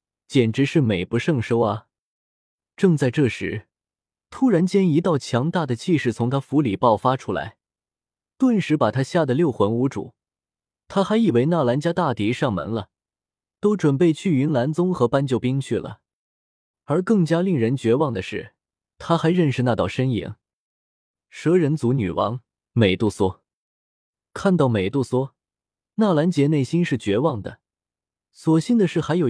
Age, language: 20-39, Chinese